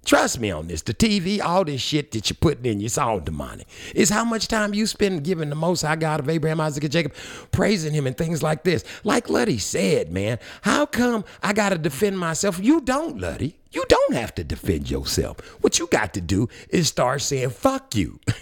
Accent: American